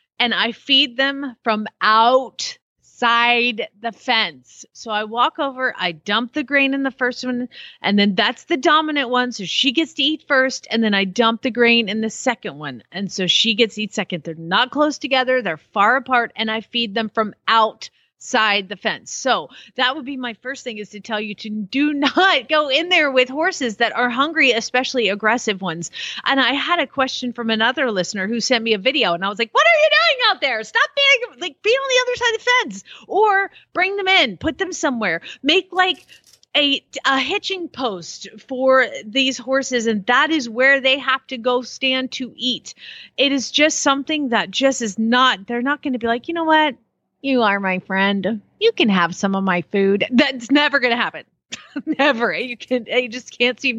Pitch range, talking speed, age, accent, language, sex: 220-285 Hz, 215 wpm, 30-49, American, English, female